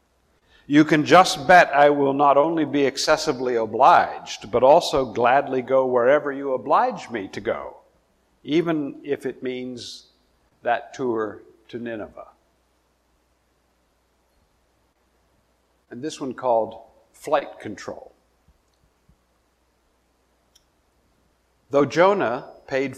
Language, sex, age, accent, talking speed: English, male, 60-79, American, 100 wpm